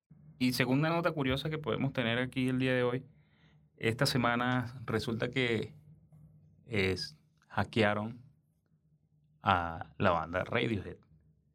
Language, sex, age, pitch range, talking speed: English, male, 30-49, 100-125 Hz, 115 wpm